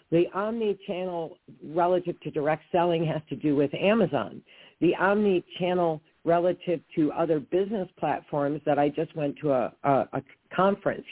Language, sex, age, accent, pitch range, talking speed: English, female, 50-69, American, 145-180 Hz, 145 wpm